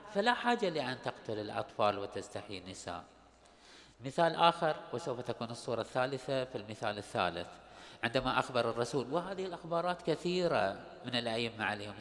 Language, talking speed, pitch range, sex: Arabic, 125 wpm, 115-155 Hz, male